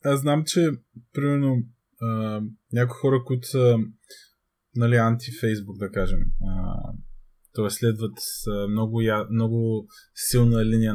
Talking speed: 120 wpm